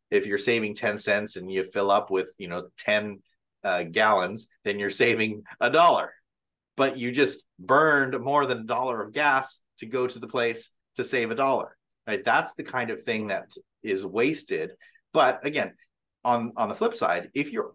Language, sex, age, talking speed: English, male, 30-49, 195 wpm